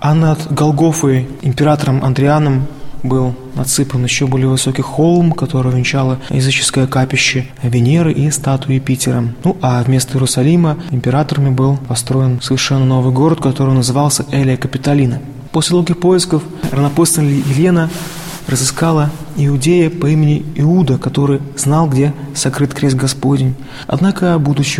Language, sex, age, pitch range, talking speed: Russian, male, 20-39, 130-155 Hz, 125 wpm